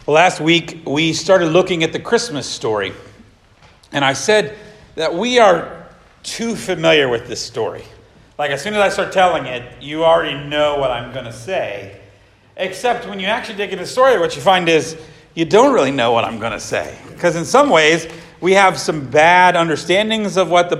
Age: 40-59